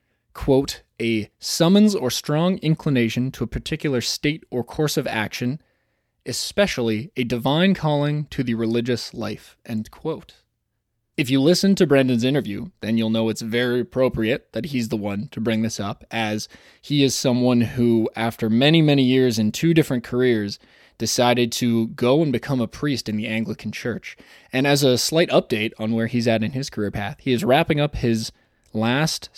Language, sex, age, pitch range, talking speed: English, male, 20-39, 110-145 Hz, 180 wpm